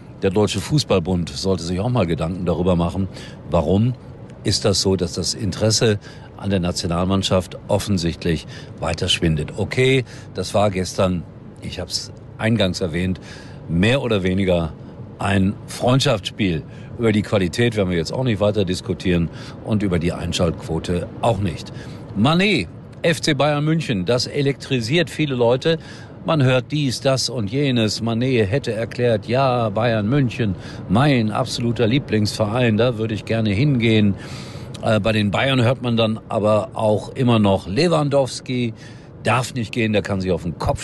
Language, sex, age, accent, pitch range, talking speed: German, male, 50-69, German, 95-125 Hz, 145 wpm